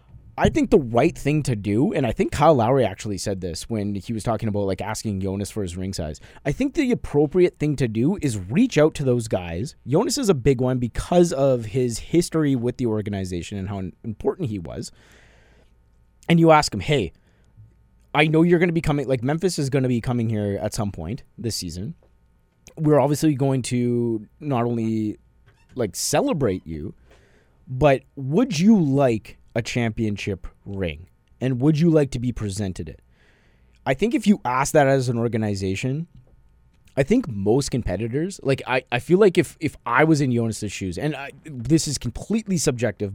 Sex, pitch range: male, 105-150 Hz